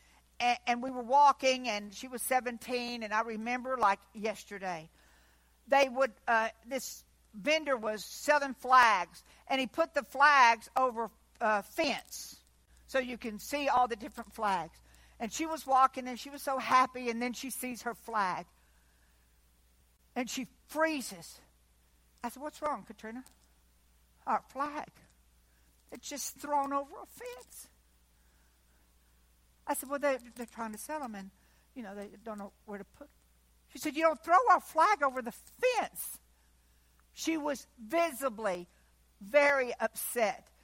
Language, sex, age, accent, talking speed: English, female, 60-79, American, 150 wpm